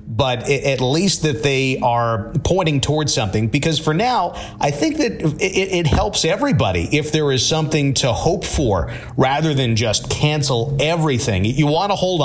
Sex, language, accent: male, English, American